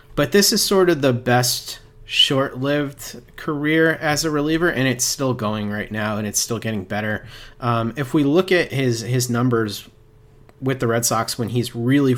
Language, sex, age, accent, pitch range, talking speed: English, male, 30-49, American, 110-130 Hz, 185 wpm